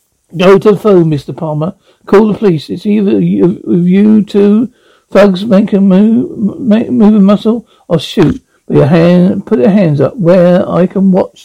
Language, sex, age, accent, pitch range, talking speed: English, male, 60-79, British, 165-210 Hz, 180 wpm